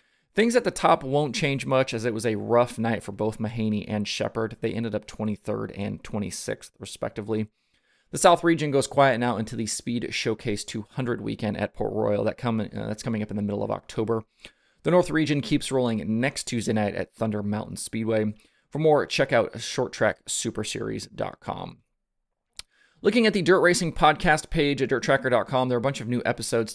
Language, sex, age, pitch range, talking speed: English, male, 30-49, 110-130 Hz, 185 wpm